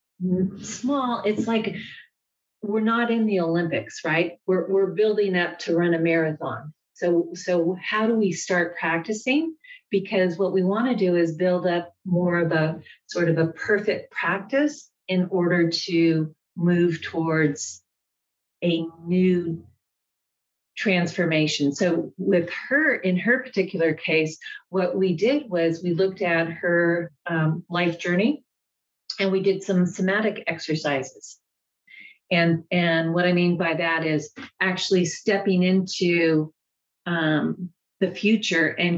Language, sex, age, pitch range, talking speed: English, female, 40-59, 170-195 Hz, 135 wpm